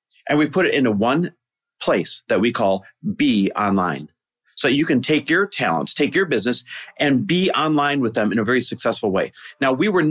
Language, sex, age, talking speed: English, male, 40-59, 200 wpm